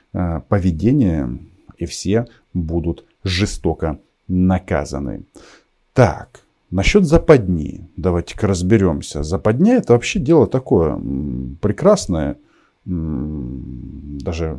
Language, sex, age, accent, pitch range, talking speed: Russian, male, 50-69, native, 85-115 Hz, 75 wpm